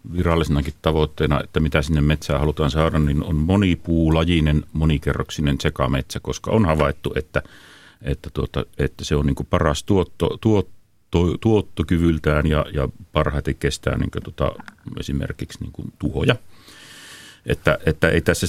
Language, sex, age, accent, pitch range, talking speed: Finnish, male, 40-59, native, 75-90 Hz, 135 wpm